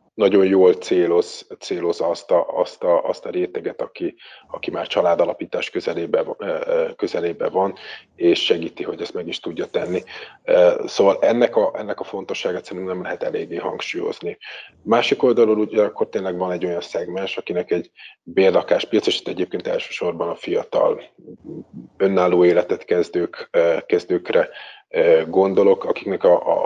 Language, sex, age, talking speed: Hungarian, male, 30-49, 140 wpm